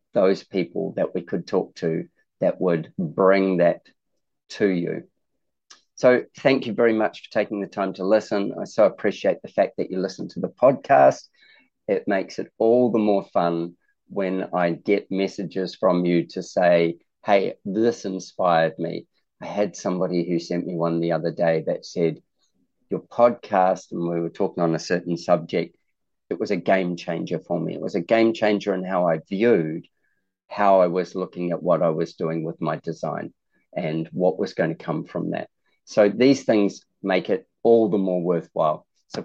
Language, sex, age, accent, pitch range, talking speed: English, male, 40-59, Australian, 85-100 Hz, 185 wpm